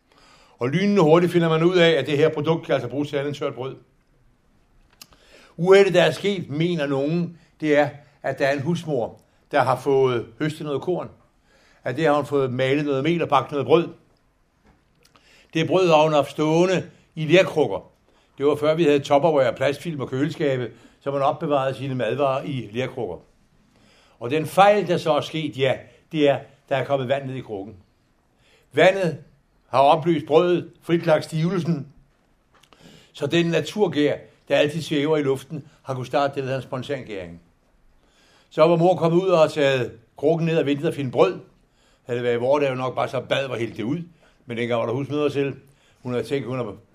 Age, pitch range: 60-79, 135-160 Hz